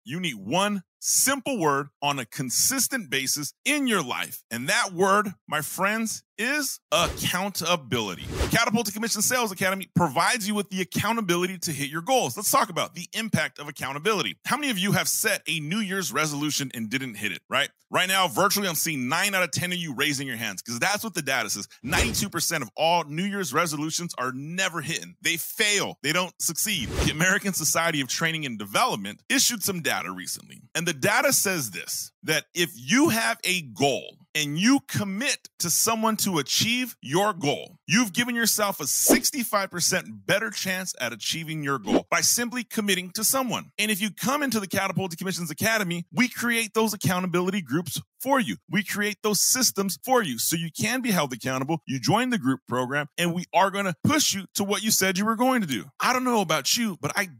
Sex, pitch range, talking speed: male, 155-220 Hz, 200 wpm